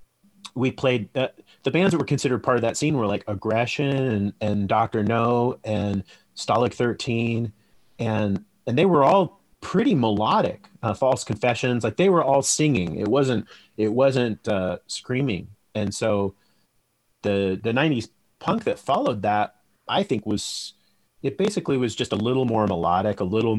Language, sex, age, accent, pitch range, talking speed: English, male, 30-49, American, 100-130 Hz, 165 wpm